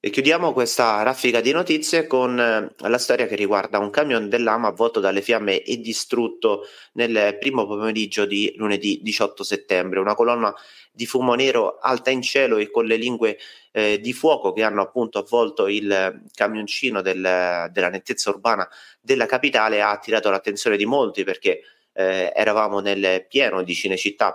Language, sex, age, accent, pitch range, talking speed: Italian, male, 30-49, native, 100-125 Hz, 165 wpm